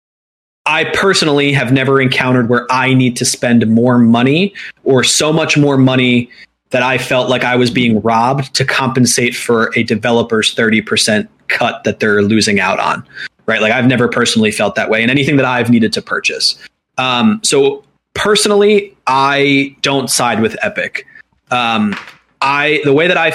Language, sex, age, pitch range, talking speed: English, male, 20-39, 125-155 Hz, 170 wpm